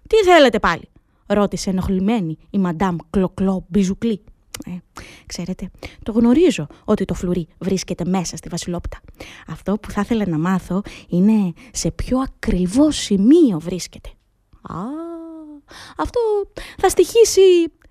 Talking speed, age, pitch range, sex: 115 wpm, 20-39, 190-315 Hz, female